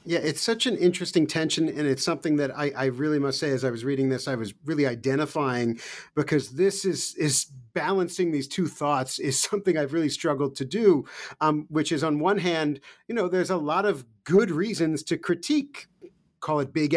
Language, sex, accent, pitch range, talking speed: English, male, American, 145-195 Hz, 205 wpm